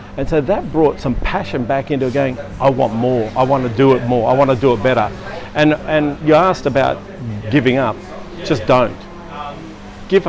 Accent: Australian